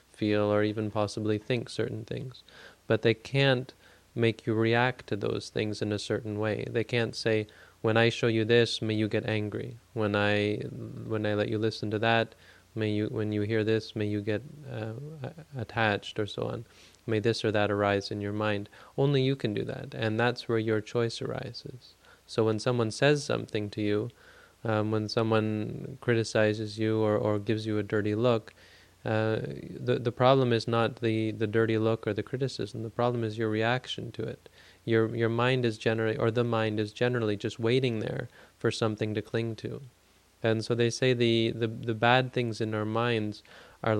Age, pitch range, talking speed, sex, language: 20-39, 105-120 Hz, 195 wpm, male, English